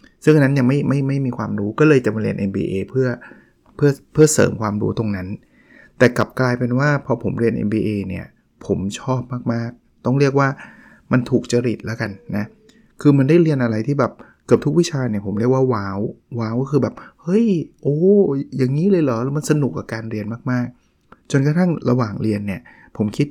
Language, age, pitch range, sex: Thai, 20-39, 110-140 Hz, male